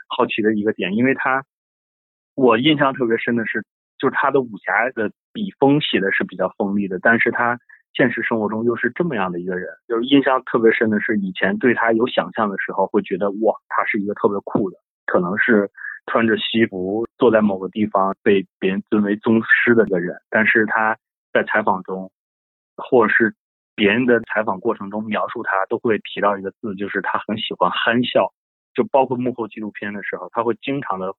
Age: 20-39